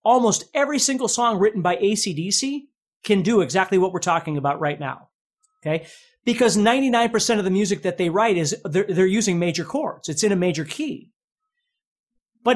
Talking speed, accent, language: 175 wpm, American, English